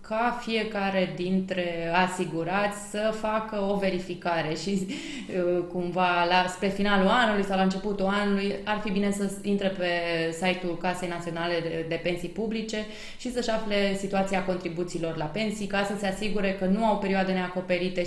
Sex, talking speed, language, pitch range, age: female, 150 wpm, Romanian, 175-210 Hz, 20-39